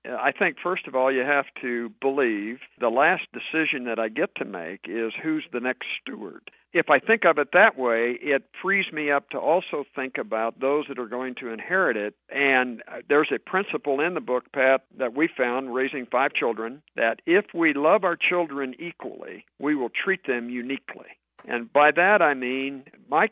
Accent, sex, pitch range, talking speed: American, male, 120-145 Hz, 195 wpm